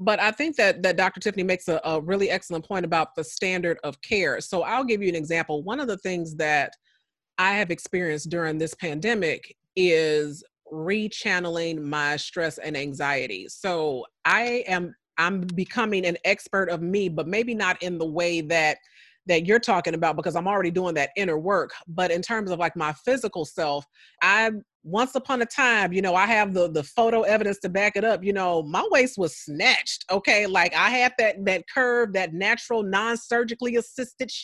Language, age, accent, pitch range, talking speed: English, 30-49, American, 175-235 Hz, 190 wpm